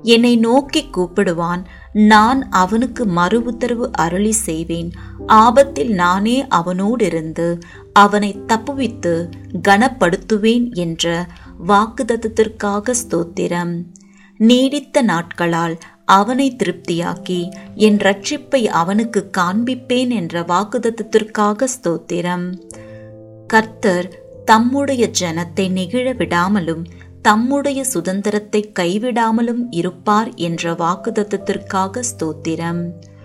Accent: native